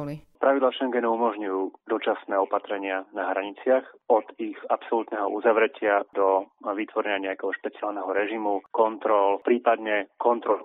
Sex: male